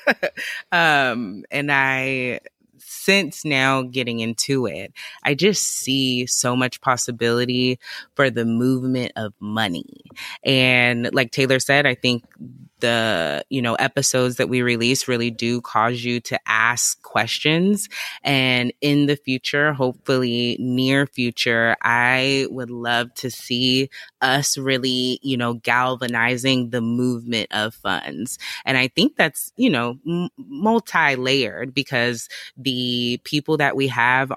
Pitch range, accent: 120-150 Hz, American